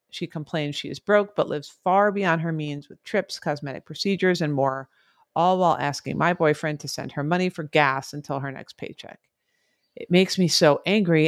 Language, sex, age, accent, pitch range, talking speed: English, female, 40-59, American, 150-185 Hz, 195 wpm